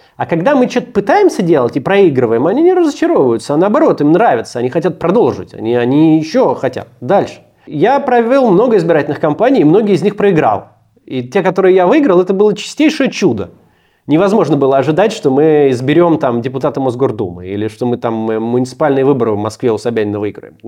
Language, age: Russian, 30-49